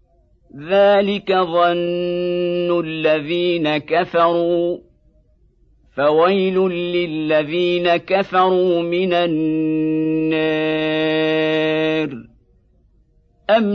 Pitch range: 155-185 Hz